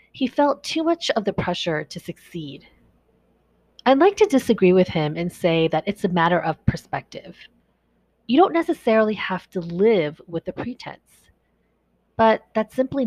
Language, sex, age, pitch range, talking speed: English, female, 30-49, 165-220 Hz, 160 wpm